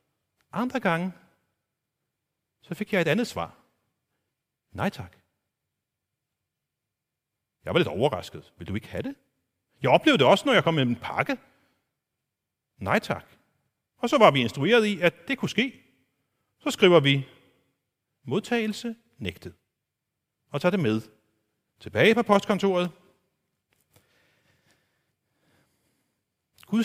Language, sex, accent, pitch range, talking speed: Danish, male, native, 130-185 Hz, 120 wpm